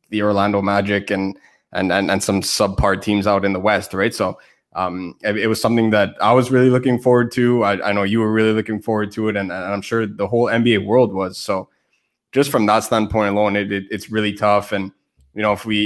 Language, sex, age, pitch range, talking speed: English, male, 20-39, 100-125 Hz, 240 wpm